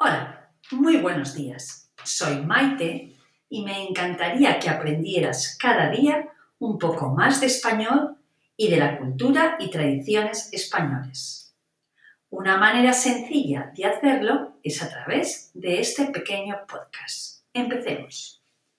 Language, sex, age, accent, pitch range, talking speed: Spanish, female, 40-59, Spanish, 150-255 Hz, 120 wpm